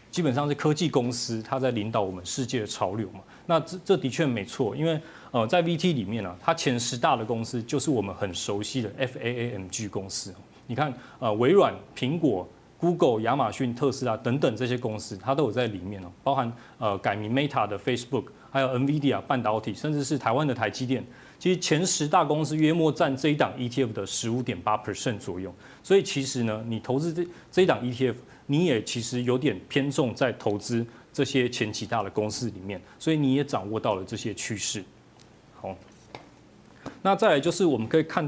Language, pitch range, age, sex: Chinese, 110-150 Hz, 30-49, male